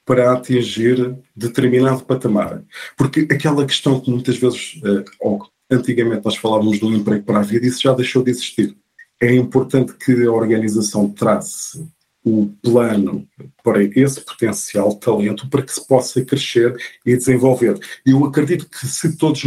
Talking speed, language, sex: 150 wpm, Portuguese, male